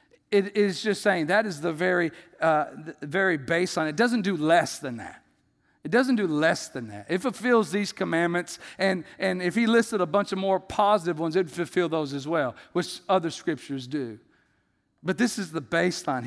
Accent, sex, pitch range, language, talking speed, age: American, male, 155-205 Hz, English, 200 wpm, 50-69